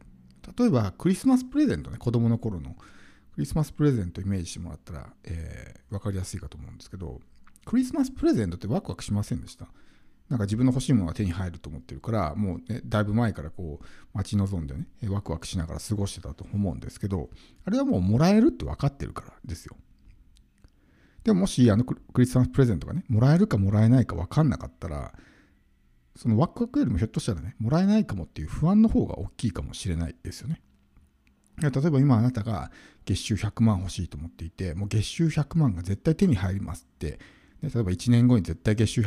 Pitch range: 85-130 Hz